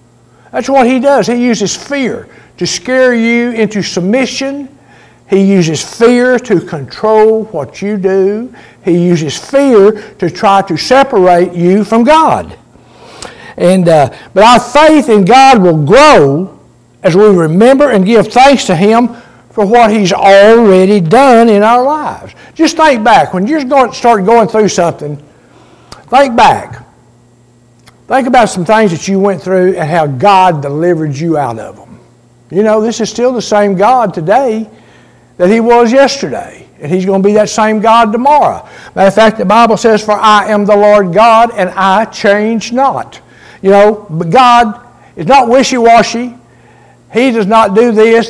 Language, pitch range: English, 175-230 Hz